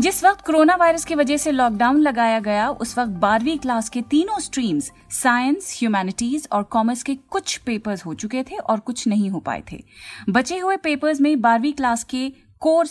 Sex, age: female, 30-49